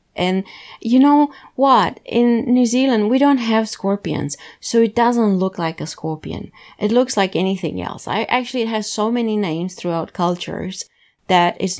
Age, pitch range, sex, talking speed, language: 30-49, 165-195 Hz, female, 170 wpm, English